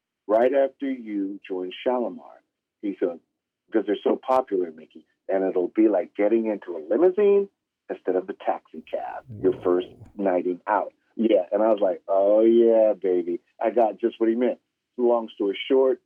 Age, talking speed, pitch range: 50-69, 170 wpm, 100-120 Hz